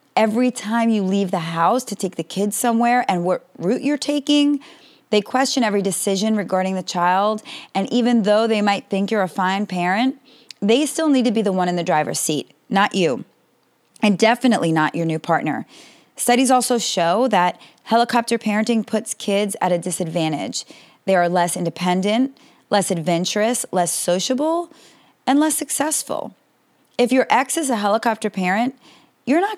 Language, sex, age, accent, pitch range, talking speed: English, female, 30-49, American, 185-255 Hz, 170 wpm